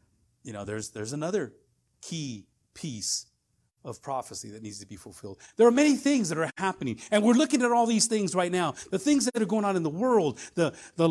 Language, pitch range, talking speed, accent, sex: English, 145-215 Hz, 220 wpm, American, male